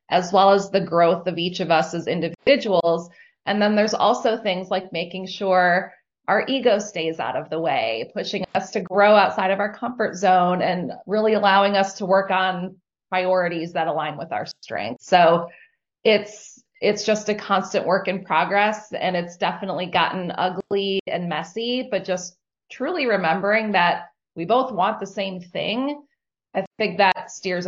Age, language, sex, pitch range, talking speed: 20-39, English, female, 175-215 Hz, 170 wpm